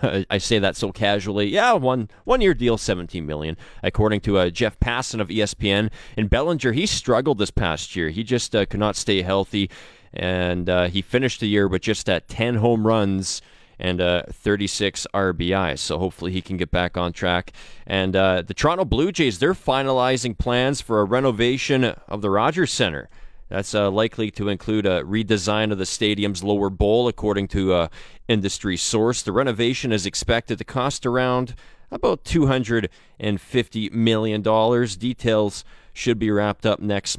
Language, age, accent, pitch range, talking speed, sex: English, 30-49, American, 95-115 Hz, 175 wpm, male